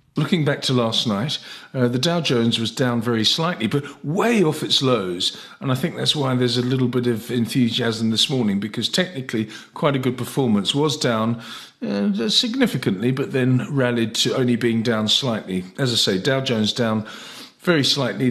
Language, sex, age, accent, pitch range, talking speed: English, male, 50-69, British, 115-150 Hz, 185 wpm